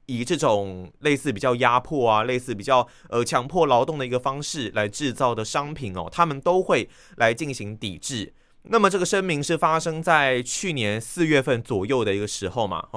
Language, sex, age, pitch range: Chinese, male, 20-39, 115-155 Hz